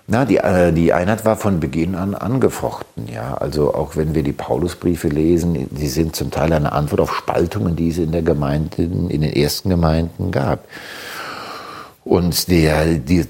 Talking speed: 155 wpm